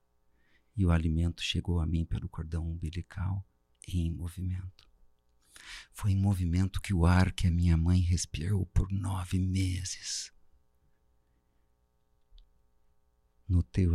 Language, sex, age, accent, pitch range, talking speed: Portuguese, male, 50-69, Brazilian, 80-90 Hz, 110 wpm